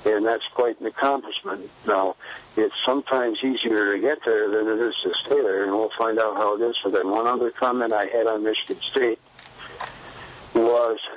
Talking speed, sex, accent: 195 wpm, male, American